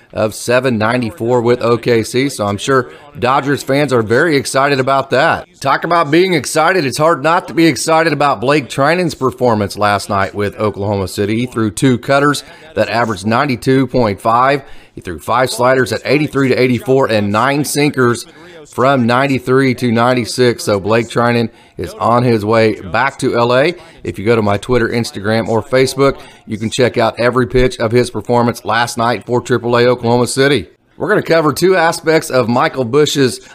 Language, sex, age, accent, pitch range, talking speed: English, male, 30-49, American, 110-135 Hz, 175 wpm